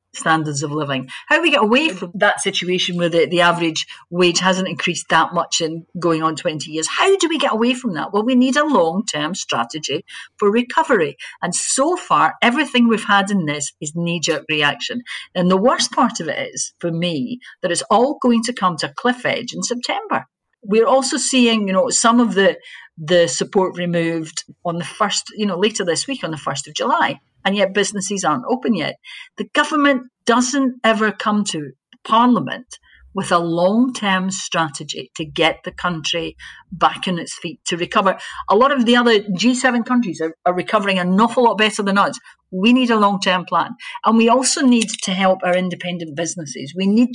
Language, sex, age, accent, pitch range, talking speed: English, female, 50-69, British, 170-235 Hz, 195 wpm